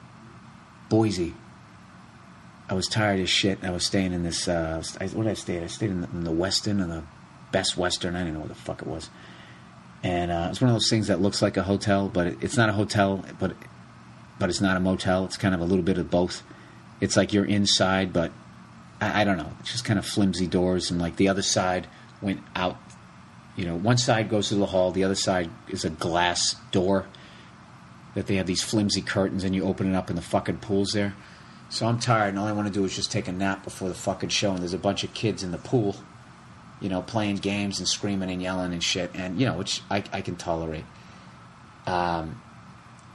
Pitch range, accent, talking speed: 90-105 Hz, American, 230 wpm